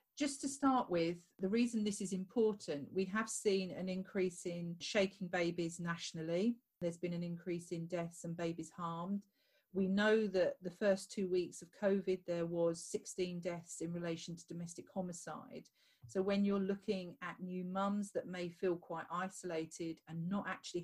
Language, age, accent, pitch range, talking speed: English, 40-59, British, 170-200 Hz, 175 wpm